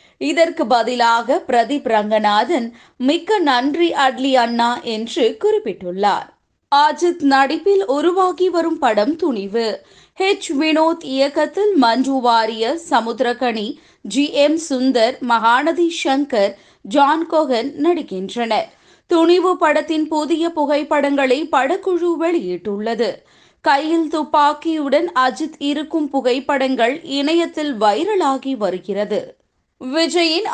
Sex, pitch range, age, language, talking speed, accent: female, 245-315 Hz, 20-39, Tamil, 90 wpm, native